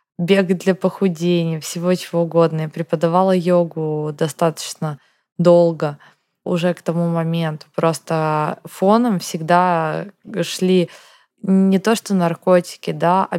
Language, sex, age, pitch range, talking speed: Russian, female, 20-39, 160-180 Hz, 110 wpm